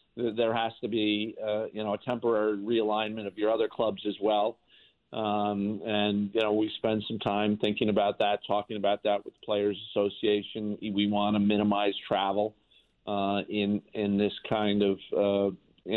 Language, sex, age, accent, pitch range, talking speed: English, male, 50-69, American, 105-115 Hz, 175 wpm